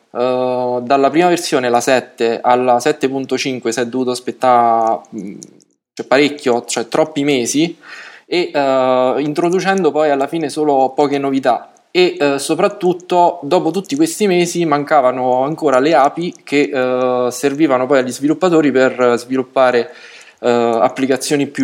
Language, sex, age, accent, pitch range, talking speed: Italian, male, 20-39, native, 125-145 Hz, 115 wpm